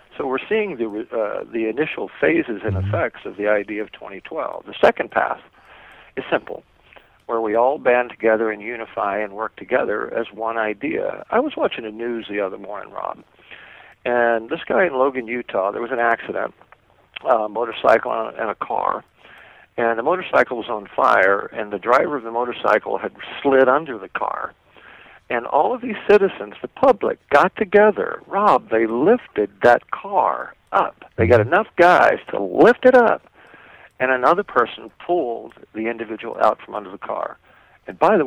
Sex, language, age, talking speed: male, English, 50-69, 175 wpm